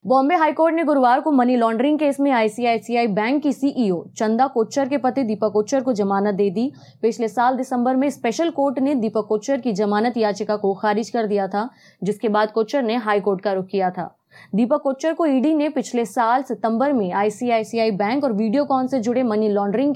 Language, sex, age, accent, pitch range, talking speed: Hindi, female, 20-39, native, 210-265 Hz, 185 wpm